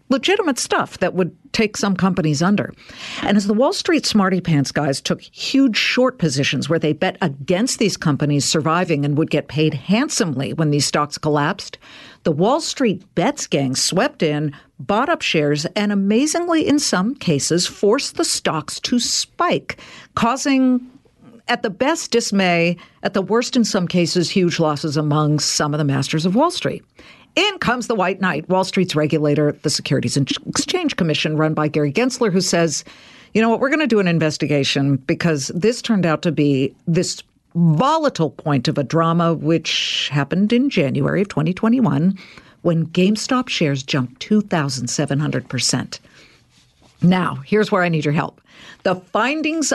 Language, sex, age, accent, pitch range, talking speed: English, female, 50-69, American, 150-225 Hz, 165 wpm